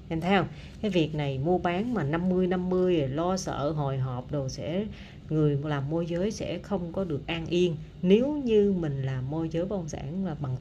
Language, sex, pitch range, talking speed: Vietnamese, female, 145-195 Hz, 200 wpm